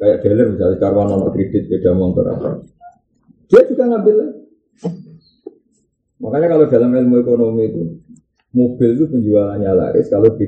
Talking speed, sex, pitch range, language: 145 wpm, male, 110-170 Hz, Malay